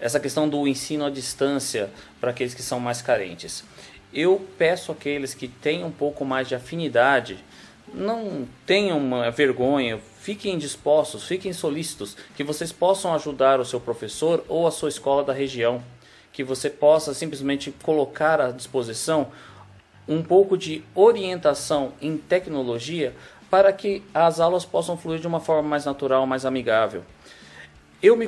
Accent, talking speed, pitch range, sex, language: Brazilian, 150 wpm, 130-155 Hz, male, Portuguese